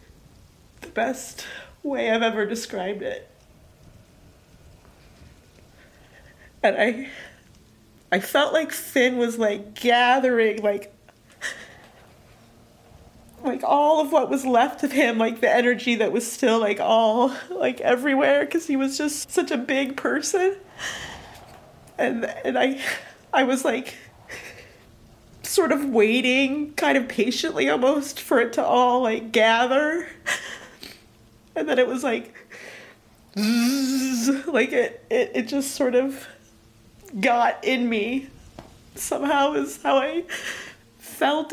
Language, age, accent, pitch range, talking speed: English, 30-49, American, 220-285 Hz, 115 wpm